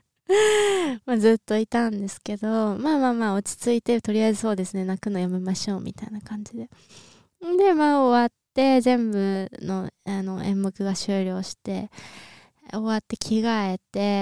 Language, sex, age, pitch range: Japanese, female, 20-39, 195-245 Hz